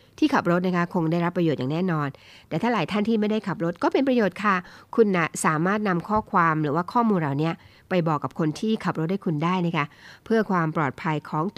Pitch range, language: 160-200 Hz, Thai